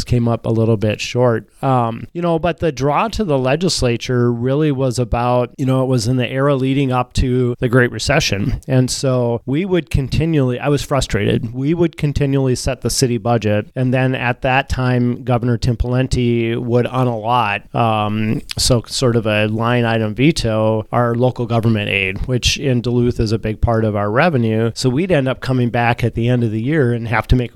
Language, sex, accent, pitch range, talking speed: English, male, American, 110-130 Hz, 205 wpm